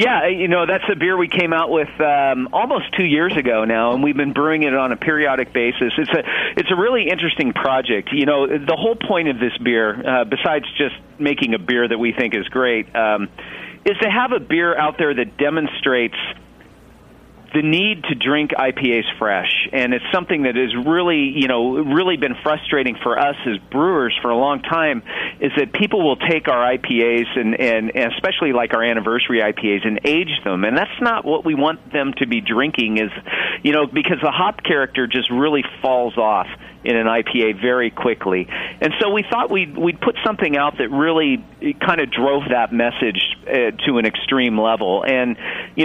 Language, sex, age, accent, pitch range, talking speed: English, male, 40-59, American, 120-150 Hz, 200 wpm